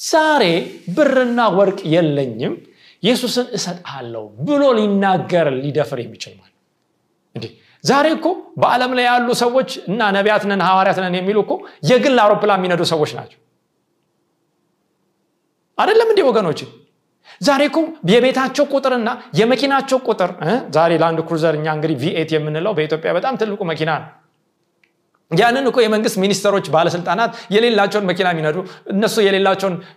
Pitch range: 165-245 Hz